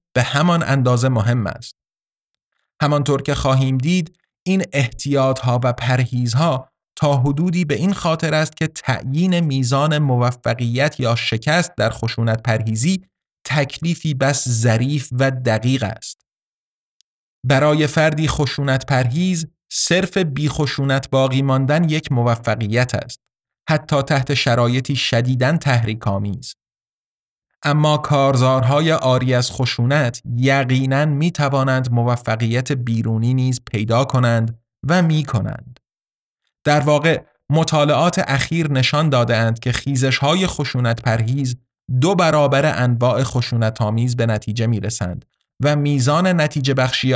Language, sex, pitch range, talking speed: Persian, male, 120-150 Hz, 115 wpm